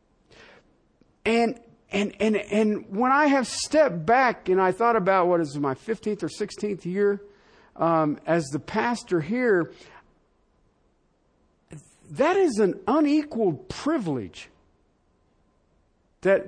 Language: English